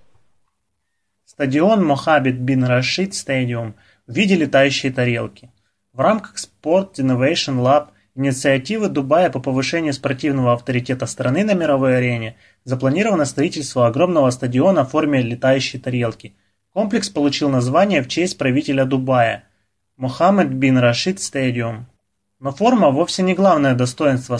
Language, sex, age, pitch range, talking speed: Russian, male, 20-39, 125-155 Hz, 125 wpm